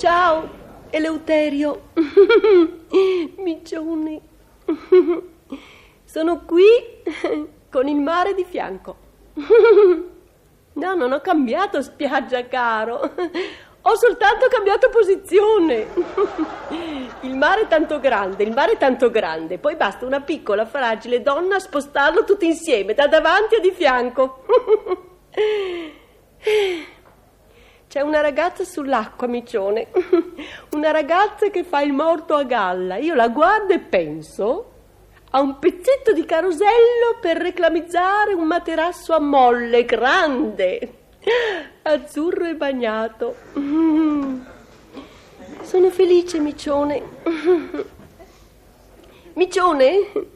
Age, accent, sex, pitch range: 40-59, native, female, 285-380 Hz